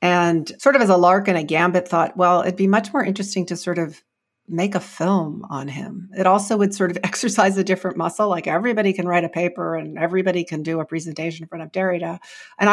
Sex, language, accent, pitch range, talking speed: female, English, American, 165-205 Hz, 235 wpm